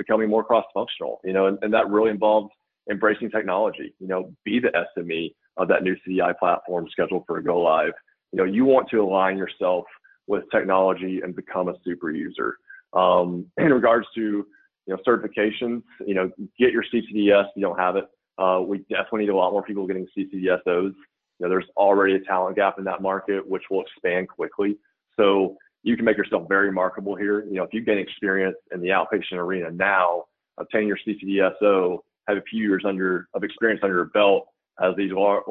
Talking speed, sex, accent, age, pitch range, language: 195 wpm, male, American, 20-39, 95-105 Hz, English